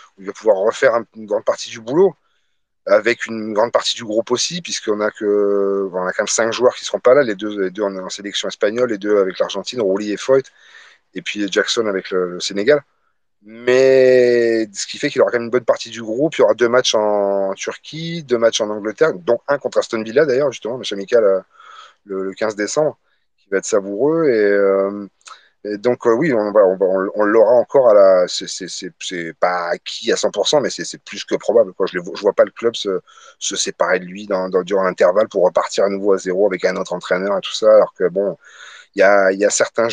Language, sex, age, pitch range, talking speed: French, male, 30-49, 100-145 Hz, 235 wpm